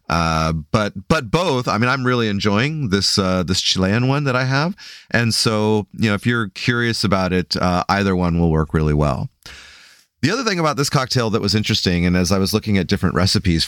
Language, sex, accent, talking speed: English, male, American, 220 wpm